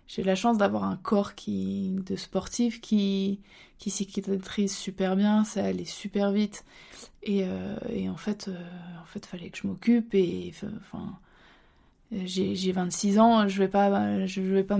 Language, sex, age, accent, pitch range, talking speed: French, female, 20-39, French, 185-205 Hz, 175 wpm